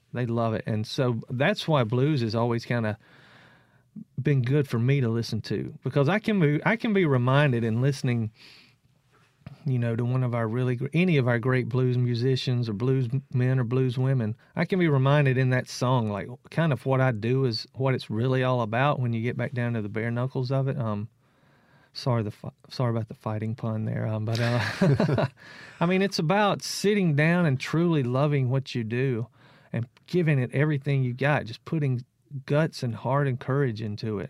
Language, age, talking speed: English, 40-59, 205 wpm